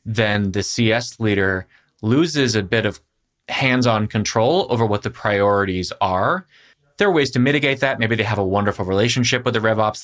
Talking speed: 180 wpm